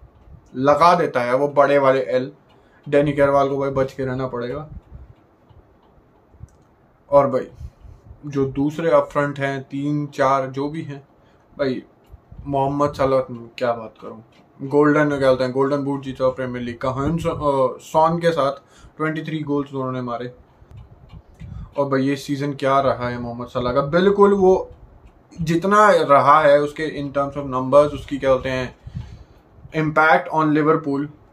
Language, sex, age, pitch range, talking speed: Hindi, male, 20-39, 130-160 Hz, 145 wpm